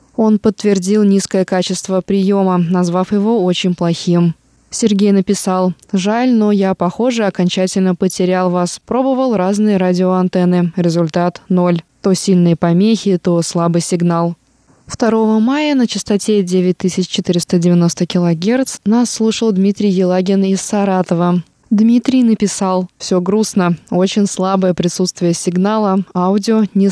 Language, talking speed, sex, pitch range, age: Russian, 115 wpm, female, 175-210 Hz, 20-39